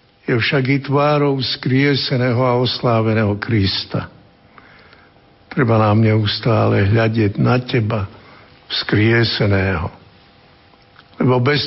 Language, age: Slovak, 60-79